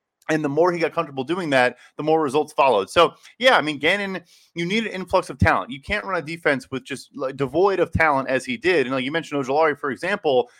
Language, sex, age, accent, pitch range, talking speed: English, male, 30-49, American, 145-180 Hz, 250 wpm